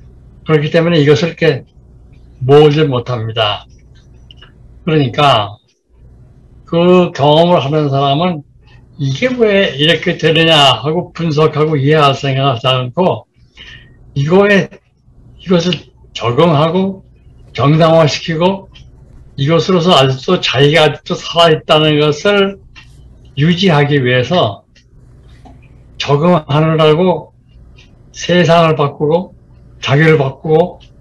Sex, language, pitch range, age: male, Korean, 125-165 Hz, 60-79